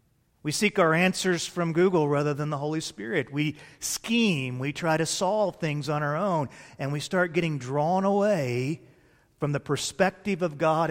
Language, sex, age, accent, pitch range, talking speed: English, male, 40-59, American, 140-180 Hz, 175 wpm